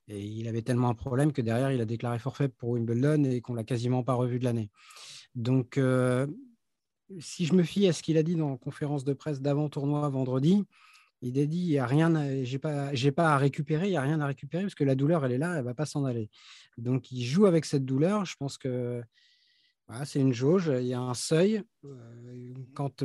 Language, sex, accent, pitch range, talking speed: French, male, French, 125-155 Hz, 240 wpm